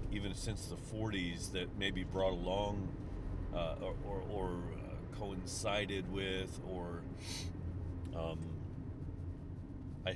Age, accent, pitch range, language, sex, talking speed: 40-59, American, 90-100 Hz, English, male, 95 wpm